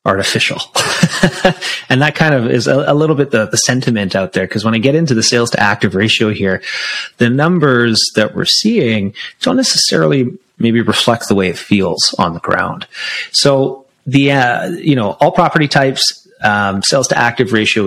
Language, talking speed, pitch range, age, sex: English, 185 wpm, 105-140 Hz, 30-49, male